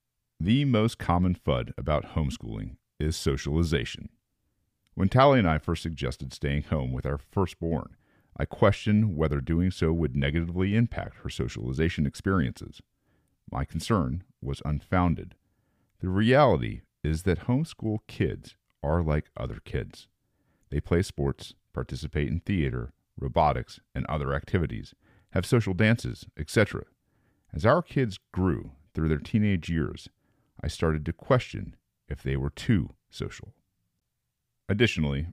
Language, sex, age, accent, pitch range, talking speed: English, male, 40-59, American, 75-105 Hz, 130 wpm